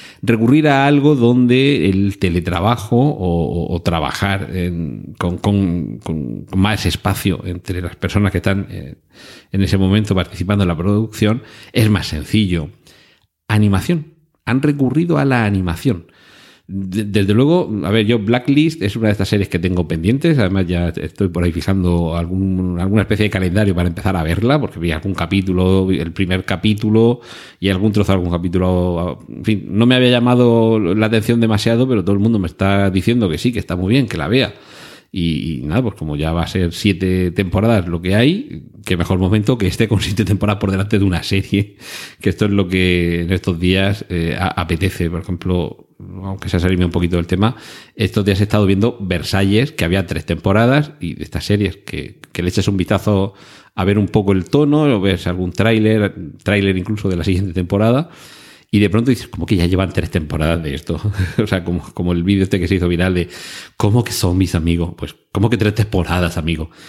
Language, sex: Spanish, male